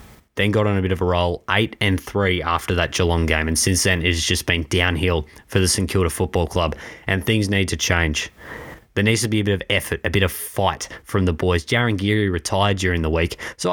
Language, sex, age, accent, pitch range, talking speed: English, male, 20-39, Australian, 90-115 Hz, 245 wpm